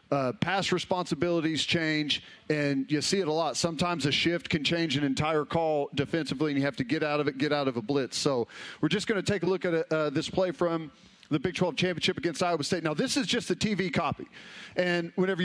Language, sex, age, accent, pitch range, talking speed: English, male, 40-59, American, 150-185 Hz, 240 wpm